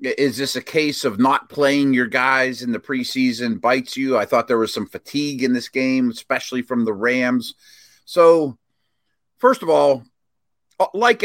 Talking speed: 170 wpm